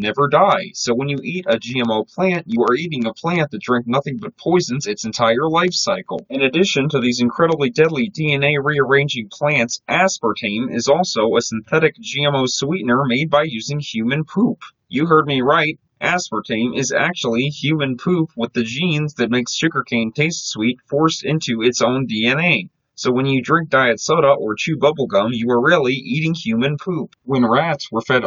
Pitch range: 120-160 Hz